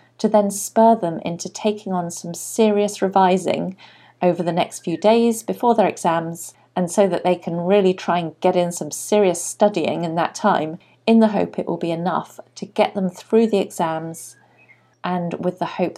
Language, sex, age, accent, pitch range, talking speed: English, female, 40-59, British, 155-210 Hz, 190 wpm